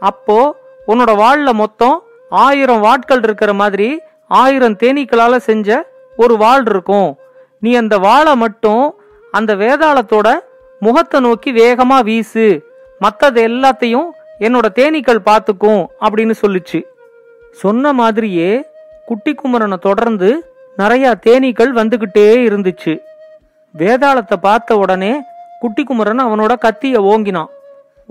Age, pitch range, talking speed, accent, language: 40-59, 215-280 Hz, 100 wpm, native, Tamil